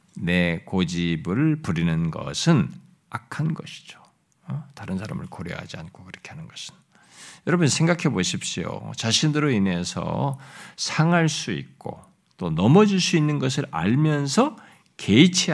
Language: Korean